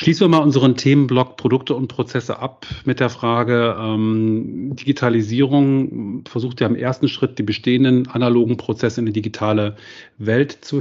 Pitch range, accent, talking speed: 105-125 Hz, German, 155 wpm